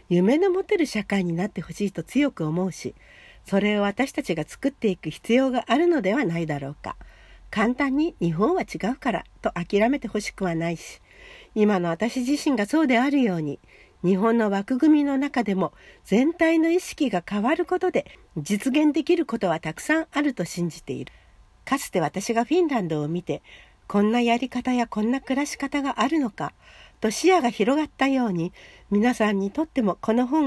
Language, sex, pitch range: Japanese, female, 180-280 Hz